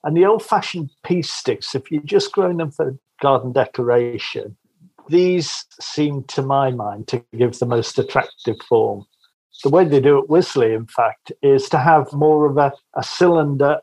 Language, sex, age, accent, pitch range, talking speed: English, male, 50-69, British, 130-155 Hz, 180 wpm